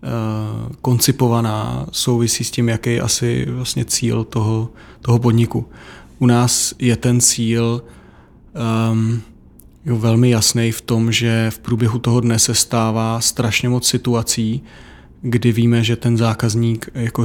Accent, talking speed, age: native, 135 wpm, 20-39